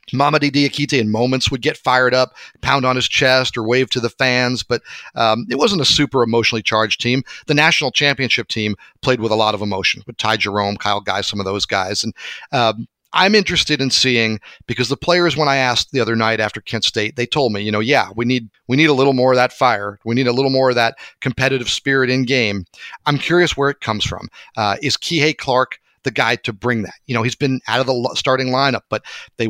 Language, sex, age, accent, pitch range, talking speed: English, male, 40-59, American, 115-150 Hz, 235 wpm